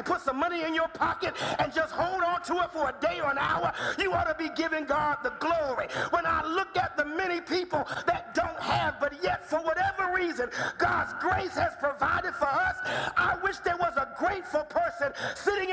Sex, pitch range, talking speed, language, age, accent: male, 280-365 Hz, 210 wpm, English, 50-69, American